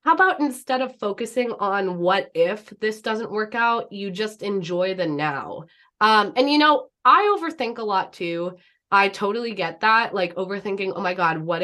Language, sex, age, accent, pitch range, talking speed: English, female, 20-39, American, 180-255 Hz, 185 wpm